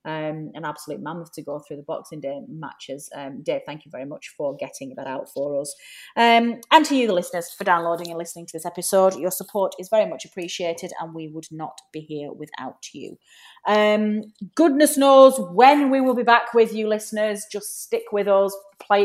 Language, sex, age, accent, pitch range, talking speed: English, female, 30-49, British, 155-205 Hz, 210 wpm